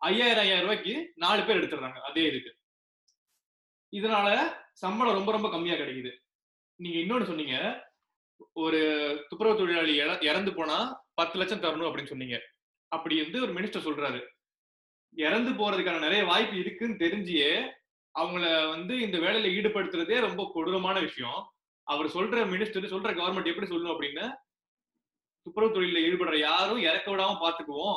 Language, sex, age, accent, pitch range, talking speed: Tamil, male, 20-39, native, 160-220 Hz, 130 wpm